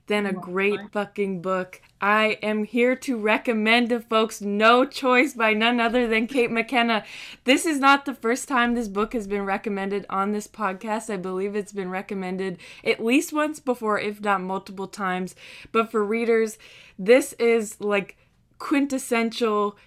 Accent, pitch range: American, 185-225 Hz